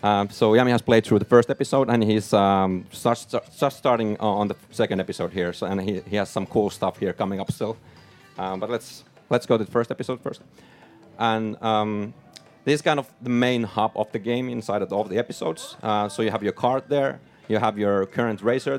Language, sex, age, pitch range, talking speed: English, male, 30-49, 95-125 Hz, 230 wpm